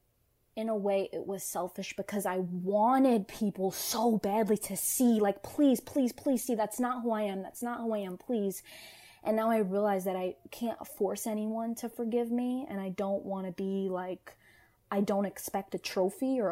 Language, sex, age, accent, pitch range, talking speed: English, female, 20-39, American, 185-215 Hz, 200 wpm